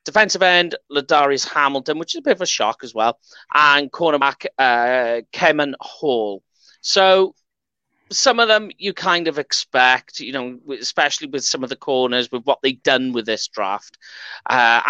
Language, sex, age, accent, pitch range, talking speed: English, male, 30-49, British, 125-170 Hz, 170 wpm